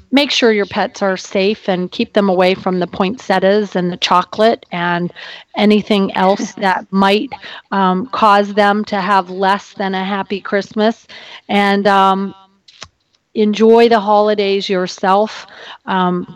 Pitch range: 180-210 Hz